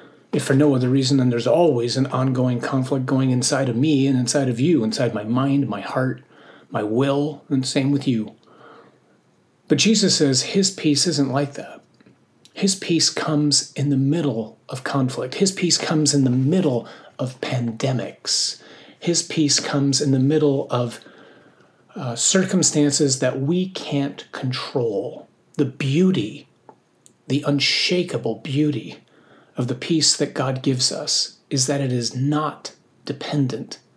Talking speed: 150 wpm